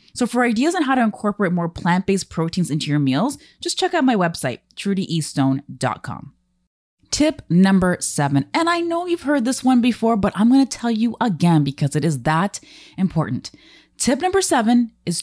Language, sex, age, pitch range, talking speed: English, female, 20-39, 175-280 Hz, 180 wpm